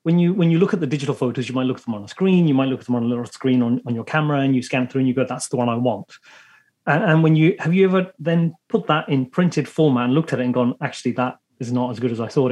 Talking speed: 335 wpm